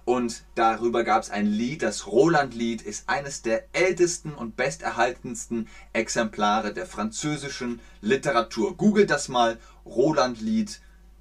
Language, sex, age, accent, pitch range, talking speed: German, male, 30-49, German, 125-190 Hz, 120 wpm